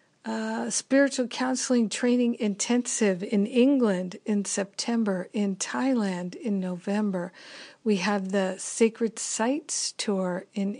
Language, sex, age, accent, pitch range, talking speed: English, female, 50-69, American, 195-235 Hz, 110 wpm